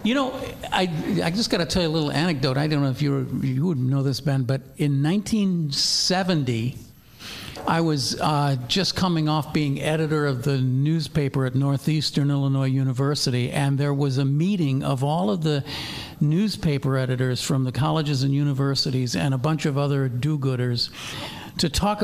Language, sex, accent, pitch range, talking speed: English, male, American, 140-175 Hz, 170 wpm